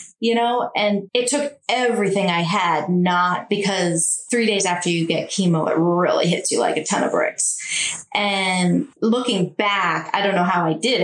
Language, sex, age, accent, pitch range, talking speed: English, female, 30-49, American, 175-210 Hz, 185 wpm